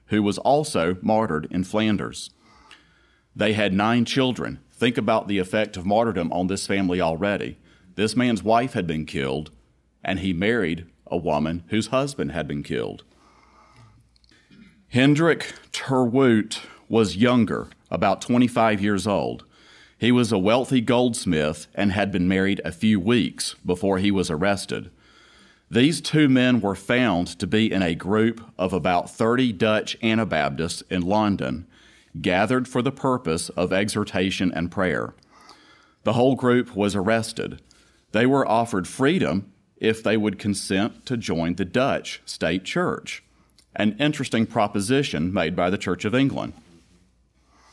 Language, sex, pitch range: English, male, 90-120 Hz